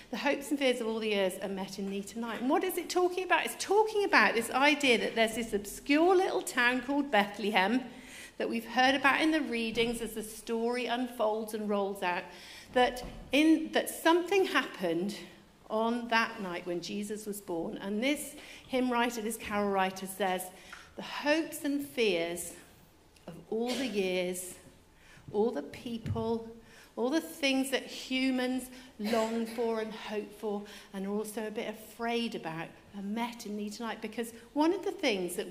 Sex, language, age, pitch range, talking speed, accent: female, English, 50-69, 205-265 Hz, 175 wpm, British